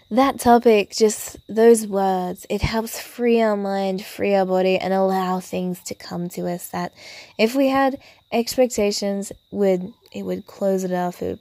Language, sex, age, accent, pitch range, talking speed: English, female, 20-39, Australian, 180-230 Hz, 175 wpm